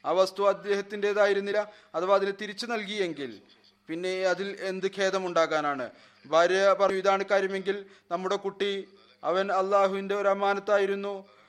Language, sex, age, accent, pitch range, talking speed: Malayalam, male, 30-49, native, 180-200 Hz, 110 wpm